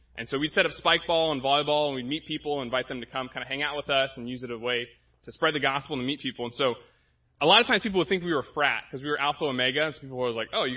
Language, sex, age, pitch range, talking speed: English, male, 20-39, 125-165 Hz, 340 wpm